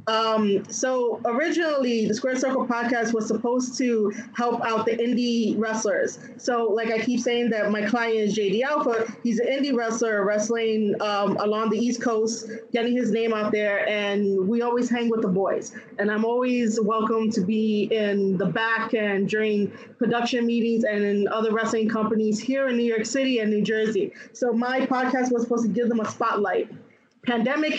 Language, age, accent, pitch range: English, 20-39, American, 215-240 Hz